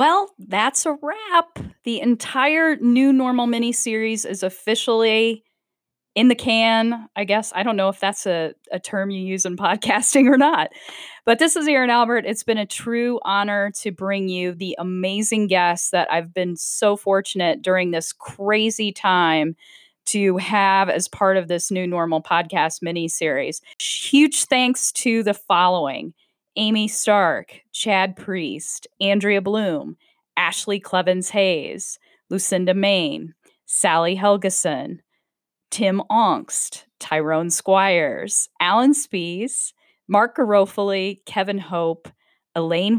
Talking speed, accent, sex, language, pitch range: 135 wpm, American, female, English, 180-225 Hz